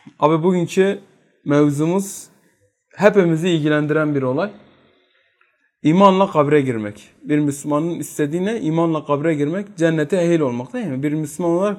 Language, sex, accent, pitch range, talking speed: Turkish, male, native, 155-220 Hz, 120 wpm